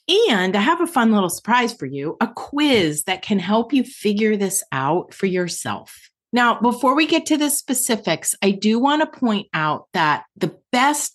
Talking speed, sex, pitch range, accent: 195 wpm, female, 165-245 Hz, American